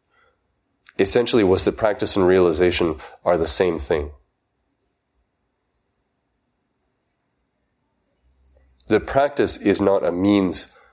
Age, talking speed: 30-49, 90 wpm